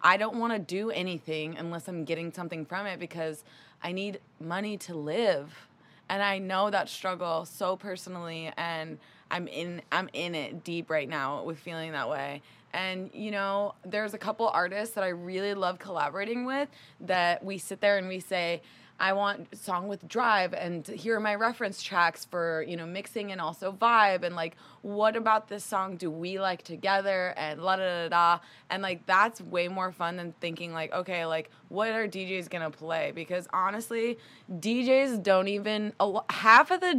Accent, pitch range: American, 170-215 Hz